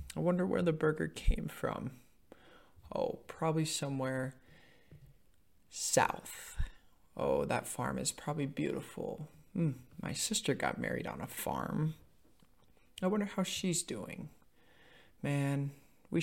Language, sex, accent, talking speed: English, male, American, 120 wpm